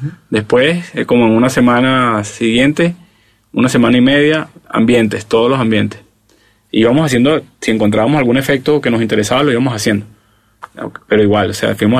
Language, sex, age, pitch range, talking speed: English, male, 20-39, 110-140 Hz, 165 wpm